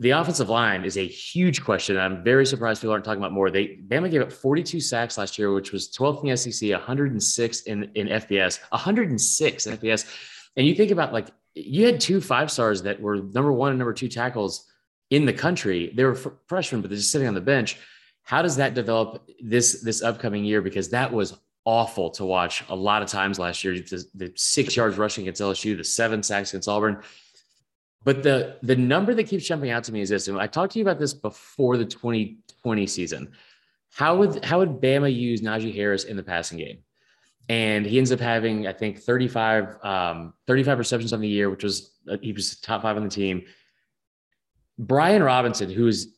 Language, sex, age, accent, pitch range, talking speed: English, male, 30-49, American, 100-130 Hz, 210 wpm